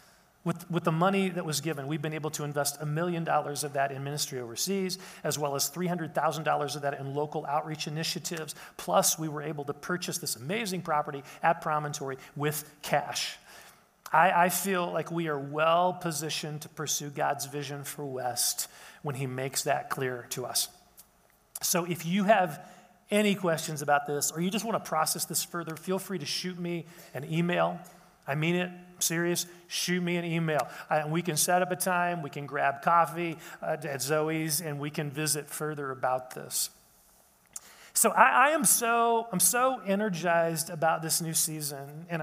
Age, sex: 40-59, male